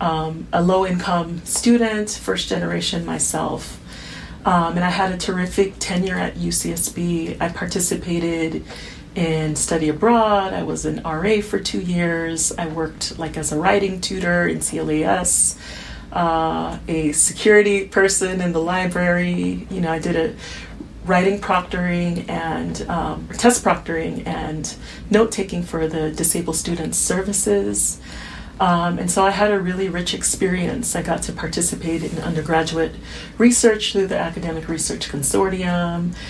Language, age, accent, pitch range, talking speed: English, 30-49, American, 160-195 Hz, 135 wpm